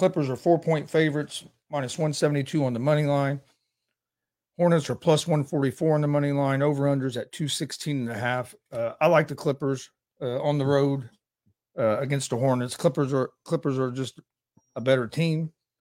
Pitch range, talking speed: 130-150 Hz, 180 wpm